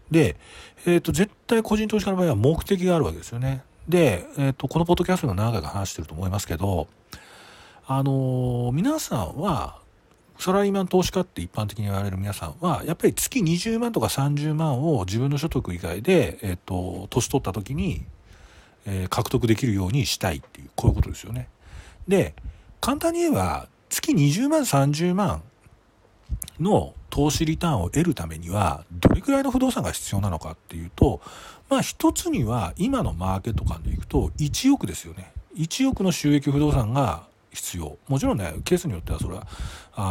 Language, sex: Japanese, male